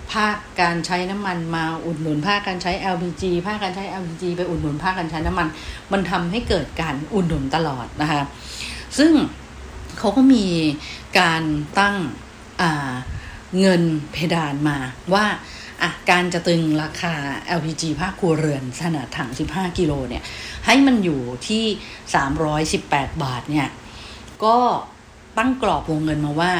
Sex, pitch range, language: female, 150-190 Hz, English